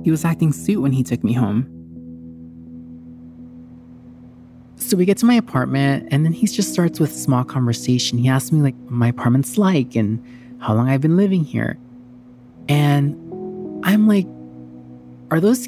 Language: English